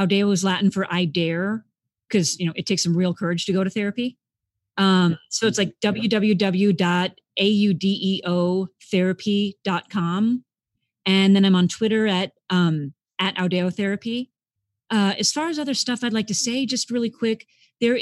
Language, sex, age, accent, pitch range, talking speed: English, female, 30-49, American, 175-205 Hz, 155 wpm